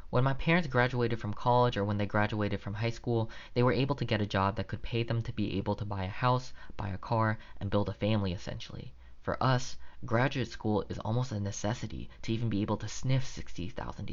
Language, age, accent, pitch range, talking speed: English, 20-39, American, 95-115 Hz, 230 wpm